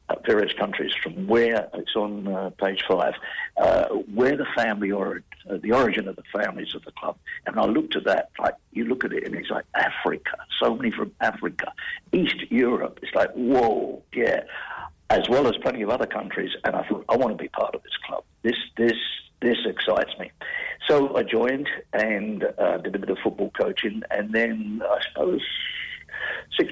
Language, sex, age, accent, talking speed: English, male, 60-79, British, 195 wpm